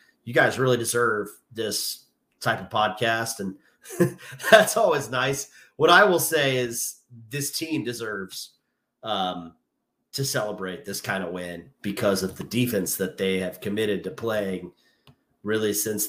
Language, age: English, 30-49